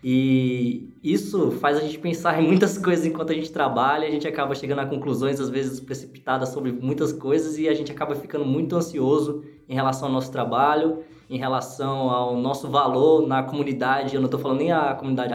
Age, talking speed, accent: 20-39, 200 wpm, Brazilian